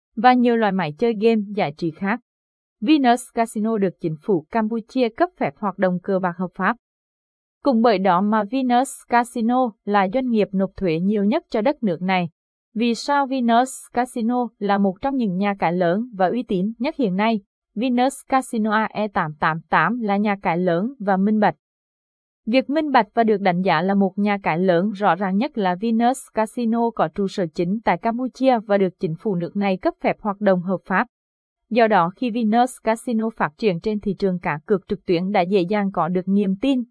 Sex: female